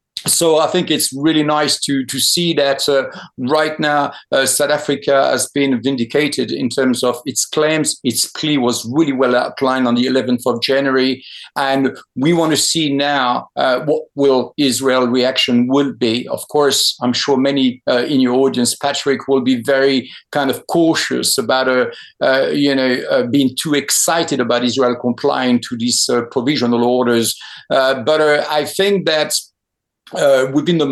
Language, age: English, 50-69